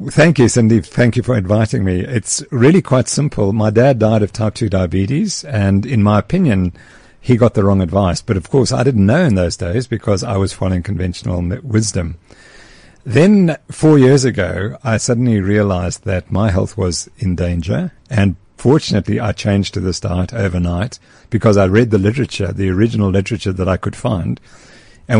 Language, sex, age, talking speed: English, male, 50-69, 185 wpm